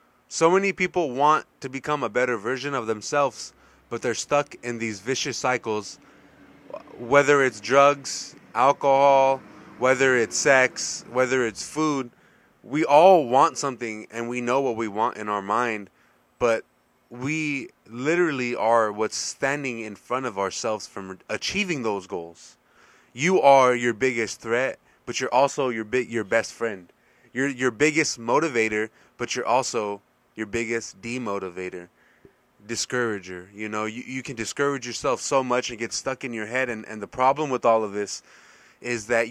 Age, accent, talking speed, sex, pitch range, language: 20-39, American, 160 wpm, male, 110-135 Hz, English